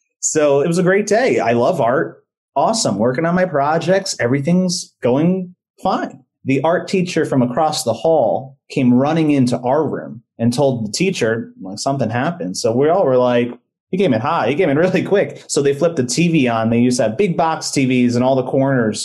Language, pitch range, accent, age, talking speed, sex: English, 120-165 Hz, American, 30-49, 210 wpm, male